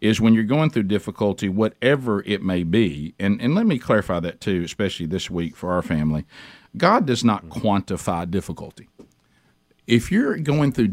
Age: 50-69